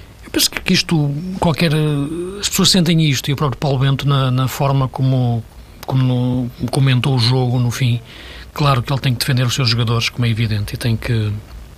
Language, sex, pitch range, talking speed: Portuguese, male, 125-155 Hz, 195 wpm